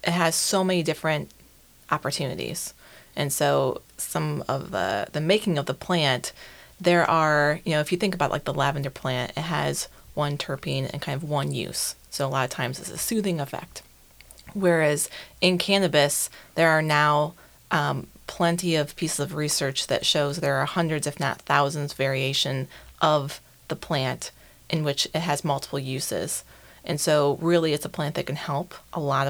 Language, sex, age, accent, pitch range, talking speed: English, female, 30-49, American, 140-165 Hz, 180 wpm